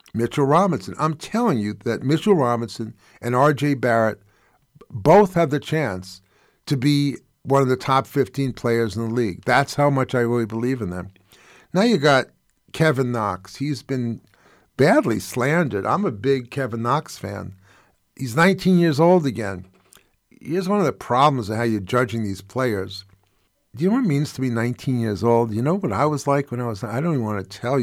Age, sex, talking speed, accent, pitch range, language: 50-69, male, 195 wpm, American, 110-155 Hz, English